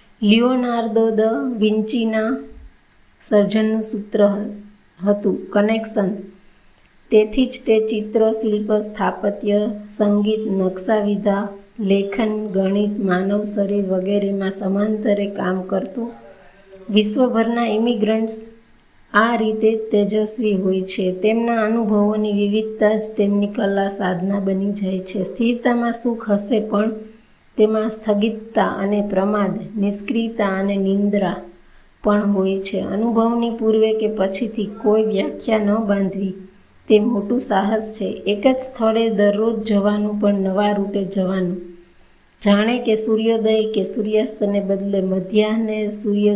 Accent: native